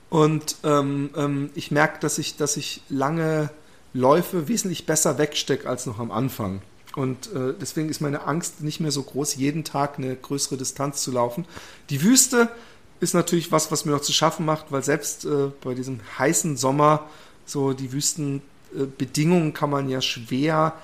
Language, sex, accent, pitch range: German, male, German, 140-180 Hz